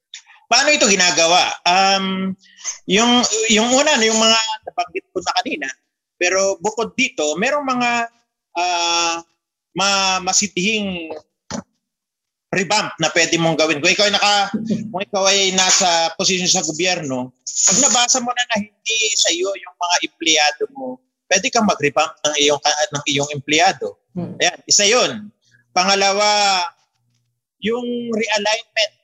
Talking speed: 130 wpm